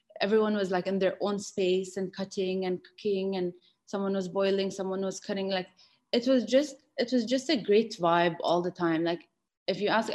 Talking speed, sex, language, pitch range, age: 205 wpm, female, English, 175-200 Hz, 20-39